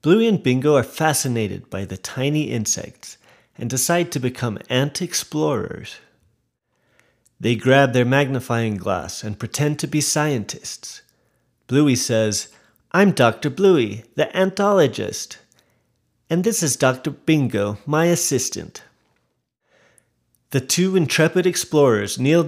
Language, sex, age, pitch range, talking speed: English, male, 30-49, 115-155 Hz, 115 wpm